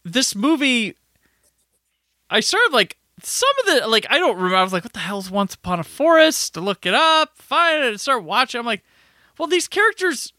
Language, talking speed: English, 220 wpm